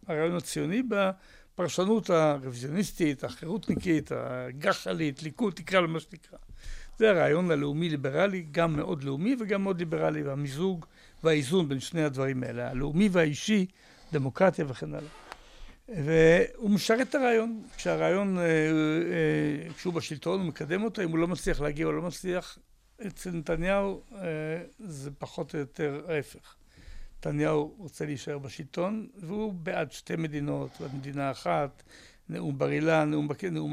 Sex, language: male, Hebrew